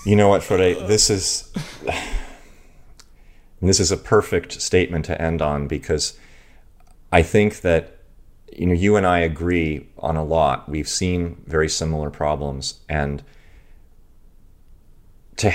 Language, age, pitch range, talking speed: English, 30-49, 75-95 Hz, 130 wpm